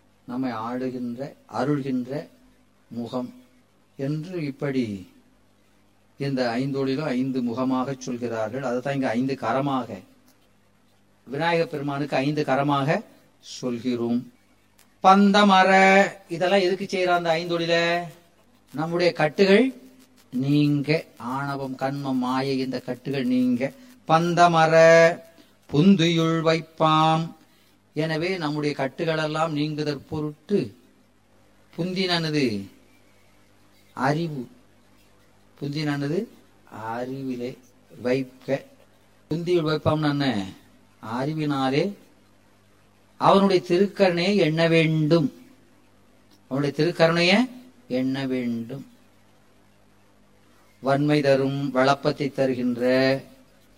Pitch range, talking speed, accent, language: 125-165 Hz, 65 wpm, native, Tamil